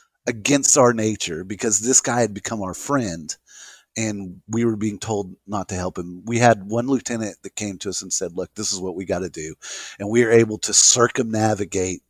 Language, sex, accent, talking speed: English, male, American, 215 wpm